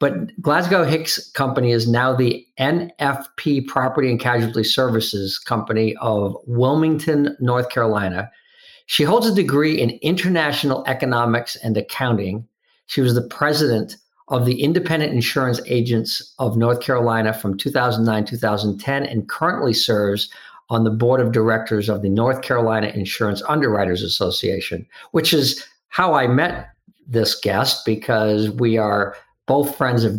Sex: male